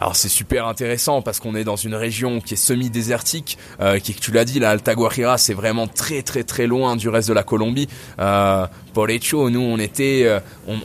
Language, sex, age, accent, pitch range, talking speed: French, male, 20-39, French, 100-120 Hz, 210 wpm